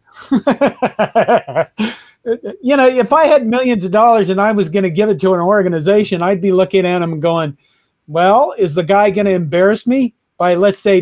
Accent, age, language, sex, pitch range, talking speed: American, 40-59, English, male, 170-210 Hz, 190 wpm